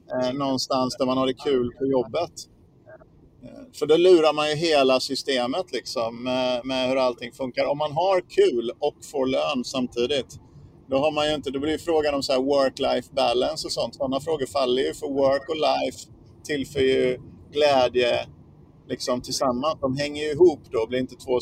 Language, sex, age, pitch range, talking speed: Swedish, male, 50-69, 125-150 Hz, 185 wpm